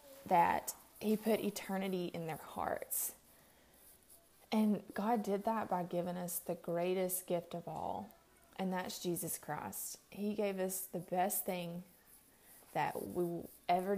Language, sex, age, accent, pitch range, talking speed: English, female, 20-39, American, 175-210 Hz, 140 wpm